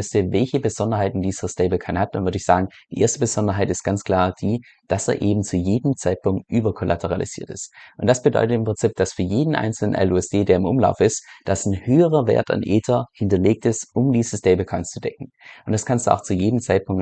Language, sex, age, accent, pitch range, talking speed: German, male, 20-39, German, 95-110 Hz, 210 wpm